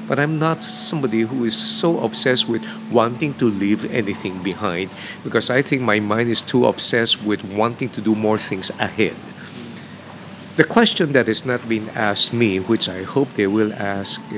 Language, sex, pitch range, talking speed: English, male, 105-145 Hz, 180 wpm